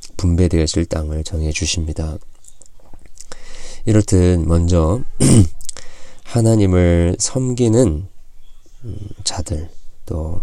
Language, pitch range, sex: Korean, 85-95 Hz, male